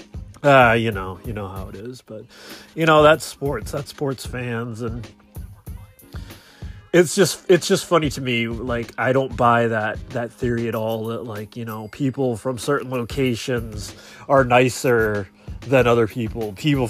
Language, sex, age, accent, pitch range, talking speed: English, male, 30-49, American, 105-125 Hz, 165 wpm